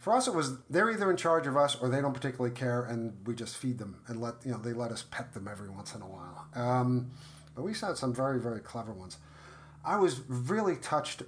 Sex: male